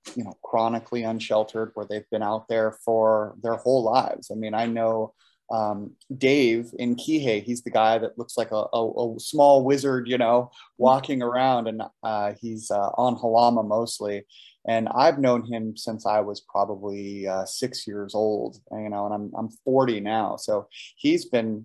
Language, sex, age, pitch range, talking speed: English, male, 30-49, 110-130 Hz, 180 wpm